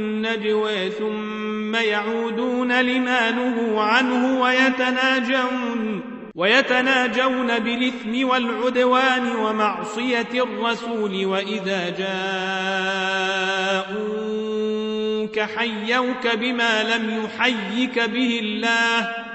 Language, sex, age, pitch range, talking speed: Arabic, male, 40-59, 215-250 Hz, 60 wpm